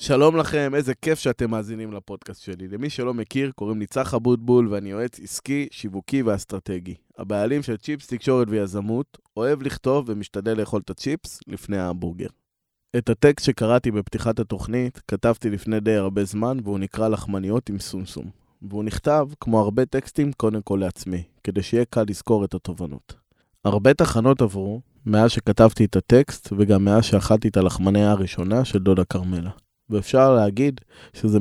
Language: Hebrew